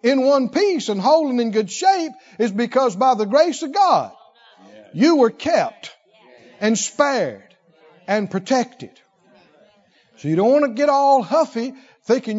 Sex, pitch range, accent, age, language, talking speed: male, 175-245 Hz, American, 60-79, English, 150 wpm